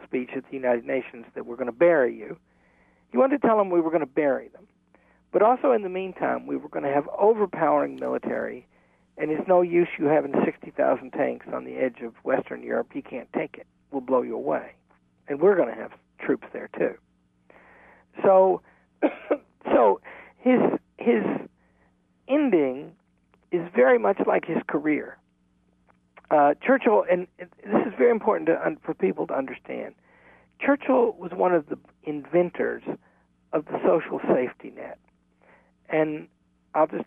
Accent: American